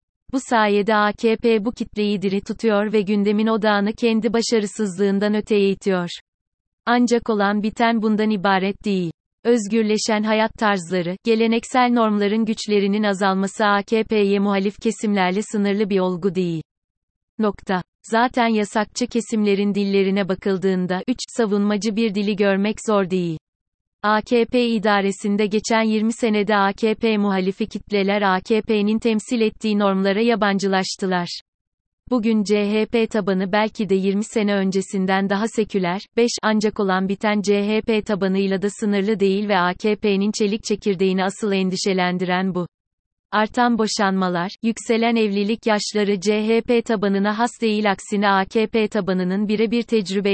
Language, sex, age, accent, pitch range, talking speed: Turkish, female, 30-49, native, 195-220 Hz, 120 wpm